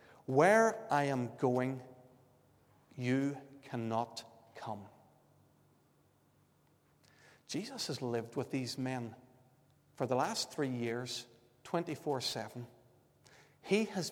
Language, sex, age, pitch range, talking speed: English, male, 40-59, 125-145 Hz, 90 wpm